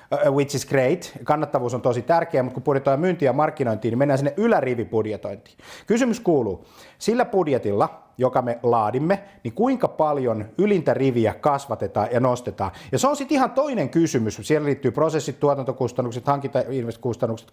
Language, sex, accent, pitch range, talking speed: Finnish, male, native, 120-160 Hz, 150 wpm